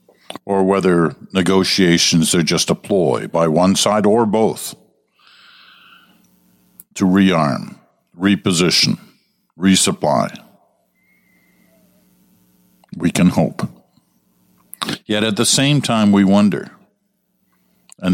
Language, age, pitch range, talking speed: English, 60-79, 80-100 Hz, 90 wpm